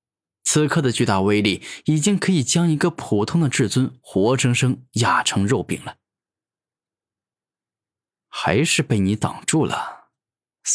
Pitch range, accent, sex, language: 105-150 Hz, native, male, Chinese